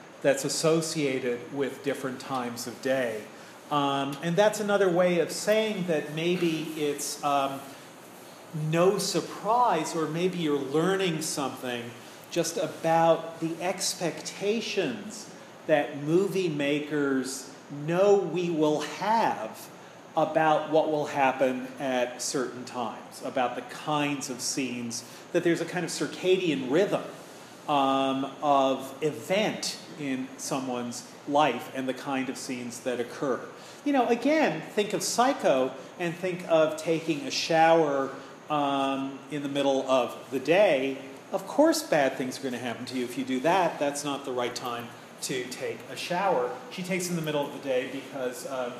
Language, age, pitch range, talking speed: English, 40-59, 130-165 Hz, 150 wpm